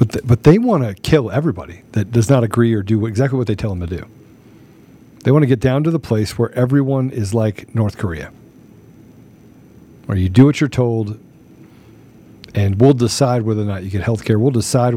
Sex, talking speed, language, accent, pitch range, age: male, 215 wpm, English, American, 110-130 Hz, 50-69